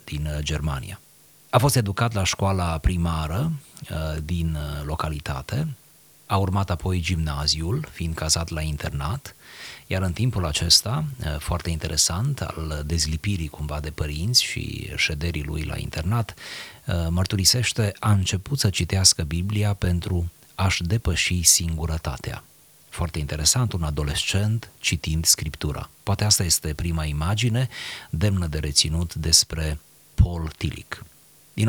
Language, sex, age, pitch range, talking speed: Romanian, male, 30-49, 80-100 Hz, 115 wpm